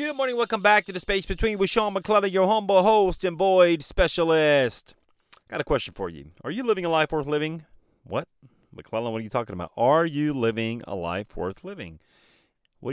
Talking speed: 205 wpm